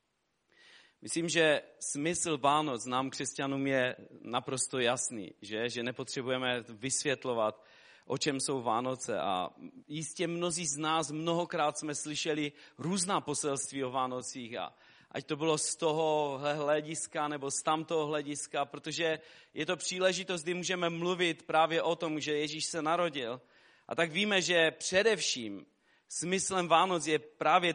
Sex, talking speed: male, 135 wpm